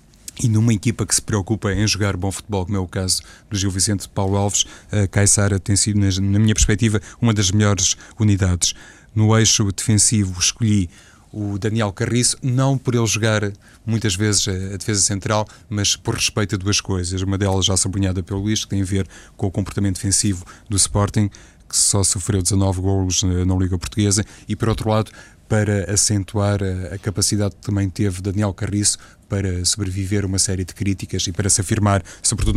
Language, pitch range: Portuguese, 95-105 Hz